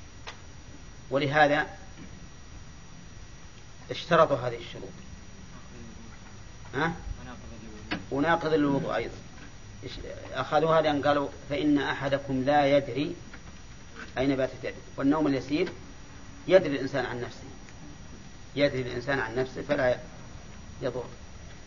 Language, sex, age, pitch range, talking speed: Arabic, male, 40-59, 125-150 Hz, 85 wpm